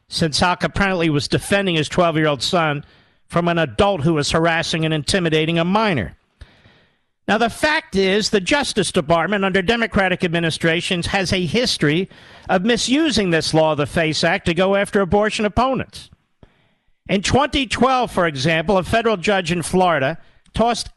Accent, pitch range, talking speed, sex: American, 165-210 Hz, 150 wpm, male